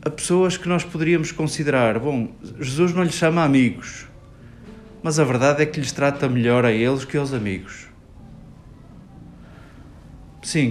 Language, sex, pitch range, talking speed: Portuguese, male, 110-150 Hz, 145 wpm